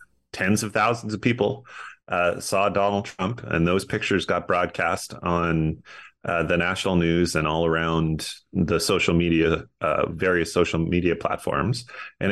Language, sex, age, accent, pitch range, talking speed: English, male, 30-49, American, 80-100 Hz, 150 wpm